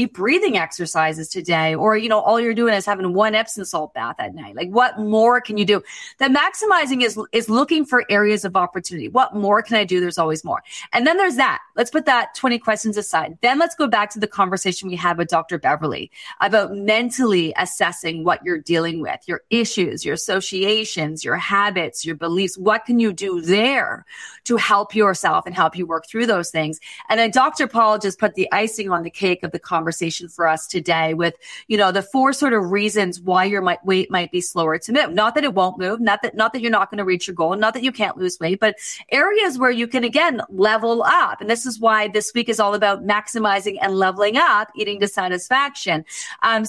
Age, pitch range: 30-49, 180-235 Hz